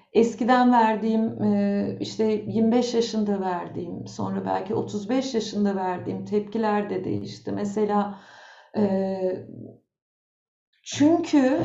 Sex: female